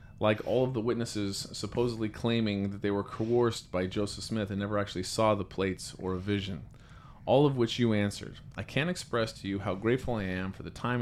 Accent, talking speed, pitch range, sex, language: American, 220 wpm, 100-125 Hz, male, English